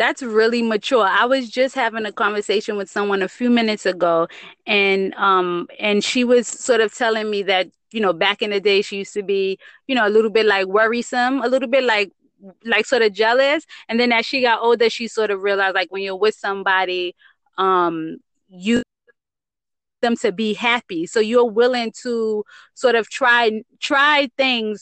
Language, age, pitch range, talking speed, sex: English, 20-39, 205-245 Hz, 195 wpm, female